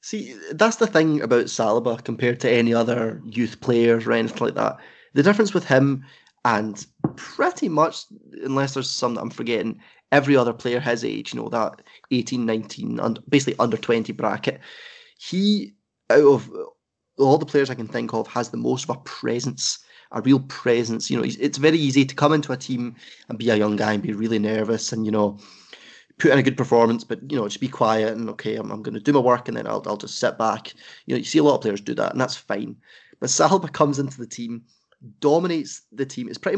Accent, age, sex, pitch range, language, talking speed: British, 20-39, male, 115-145 Hz, English, 220 wpm